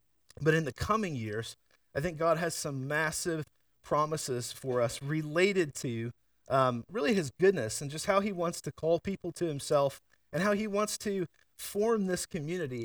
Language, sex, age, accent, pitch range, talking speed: English, male, 40-59, American, 130-170 Hz, 175 wpm